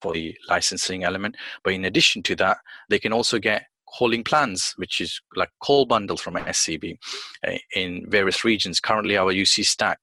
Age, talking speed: 30-49, 180 wpm